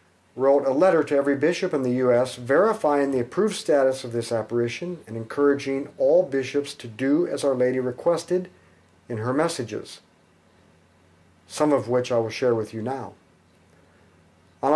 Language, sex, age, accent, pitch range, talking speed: English, male, 50-69, American, 115-160 Hz, 160 wpm